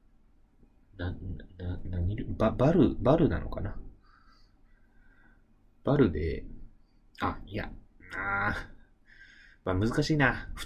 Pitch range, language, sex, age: 85-110 Hz, Japanese, male, 30-49